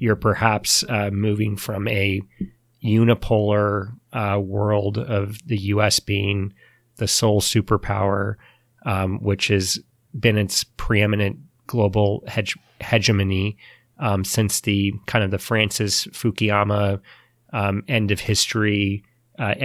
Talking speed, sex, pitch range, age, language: 115 wpm, male, 100-110 Hz, 30-49, English